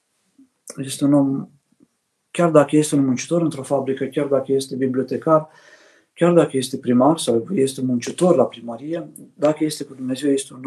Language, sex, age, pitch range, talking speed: Romanian, male, 50-69, 125-150 Hz, 170 wpm